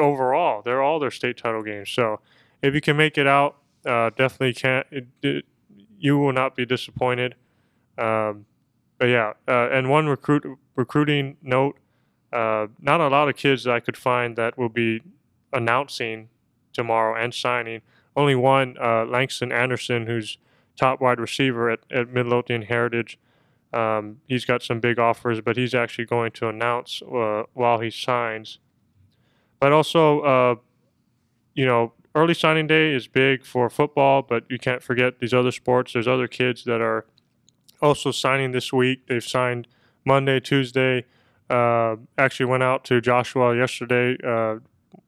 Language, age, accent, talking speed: English, 20-39, American, 160 wpm